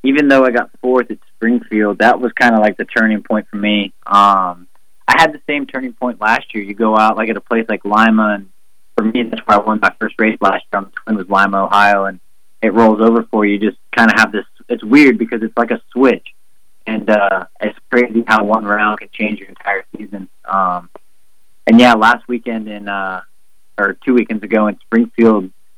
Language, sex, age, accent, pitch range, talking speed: English, male, 30-49, American, 100-110 Hz, 225 wpm